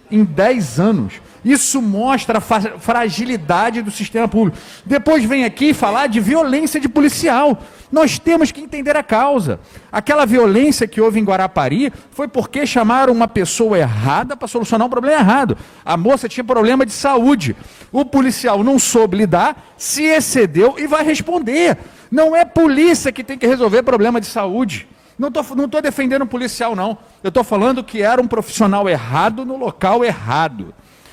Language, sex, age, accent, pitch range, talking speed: Portuguese, male, 50-69, Brazilian, 195-260 Hz, 160 wpm